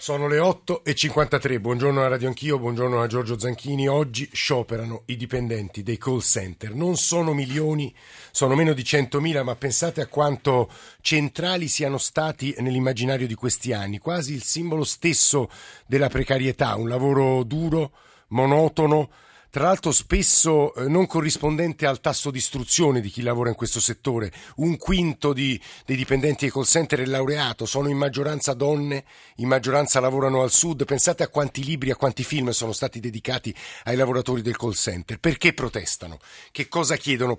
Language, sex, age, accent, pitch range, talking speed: Italian, male, 50-69, native, 125-150 Hz, 160 wpm